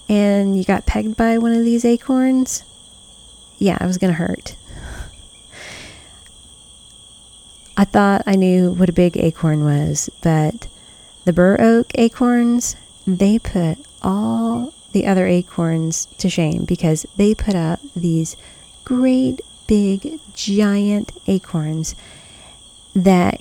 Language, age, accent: English, 30-49, American